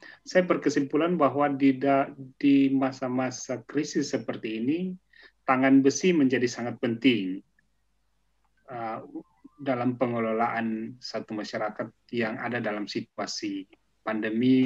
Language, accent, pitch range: Indonesian, native, 125-145 Hz